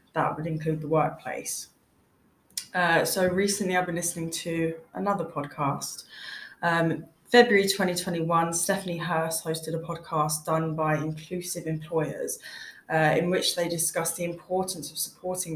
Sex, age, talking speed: female, 20-39, 135 wpm